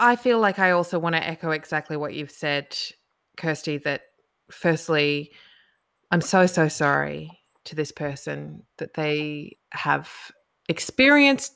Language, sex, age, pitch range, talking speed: English, female, 20-39, 155-185 Hz, 135 wpm